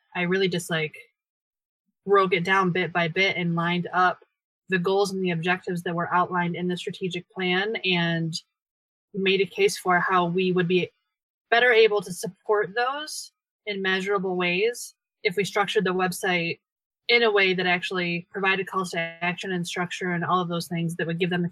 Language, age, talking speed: English, 20-39, 190 wpm